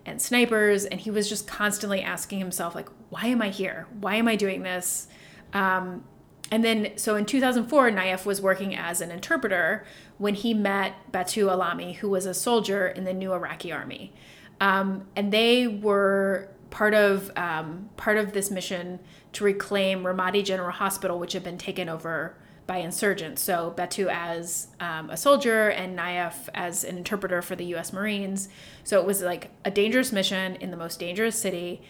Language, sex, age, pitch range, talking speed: English, female, 30-49, 180-205 Hz, 180 wpm